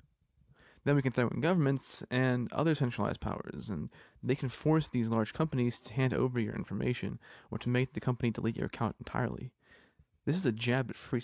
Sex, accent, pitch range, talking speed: male, American, 115-140 Hz, 200 wpm